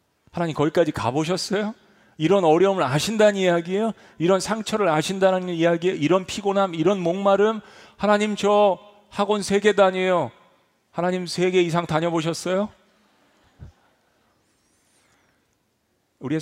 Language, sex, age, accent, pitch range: Korean, male, 40-59, native, 110-180 Hz